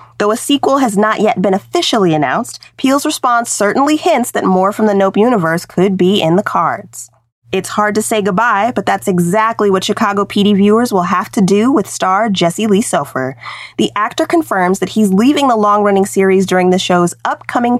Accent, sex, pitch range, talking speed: American, female, 180-235 Hz, 195 wpm